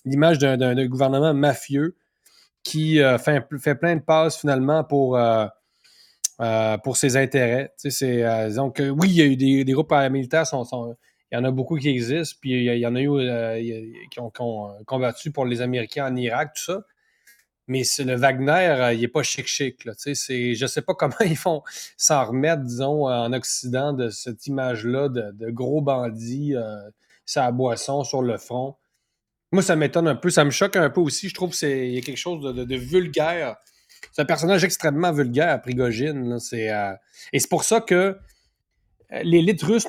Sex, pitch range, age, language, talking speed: male, 125-160 Hz, 30-49, French, 210 wpm